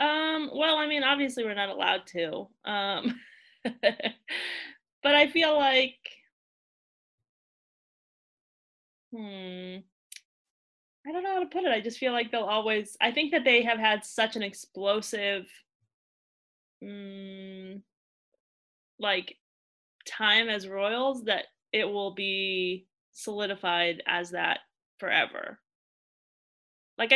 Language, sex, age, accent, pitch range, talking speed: English, female, 20-39, American, 195-255 Hz, 115 wpm